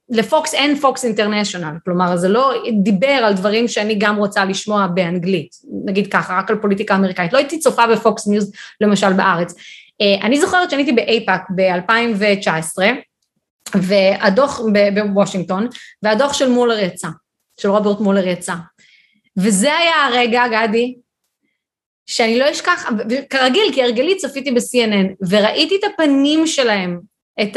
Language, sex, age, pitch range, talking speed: Hebrew, female, 30-49, 205-275 Hz, 135 wpm